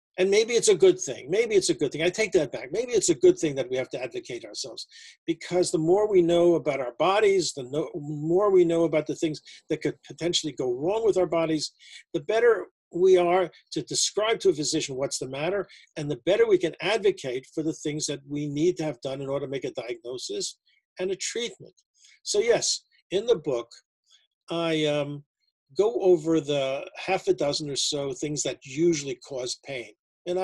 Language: English